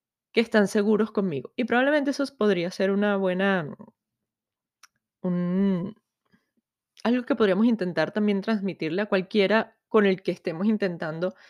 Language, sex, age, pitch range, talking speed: Spanish, female, 20-39, 180-220 Hz, 125 wpm